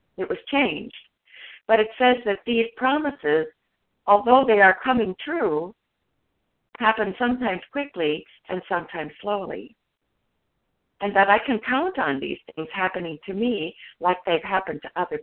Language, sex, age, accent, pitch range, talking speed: English, female, 50-69, American, 195-250 Hz, 140 wpm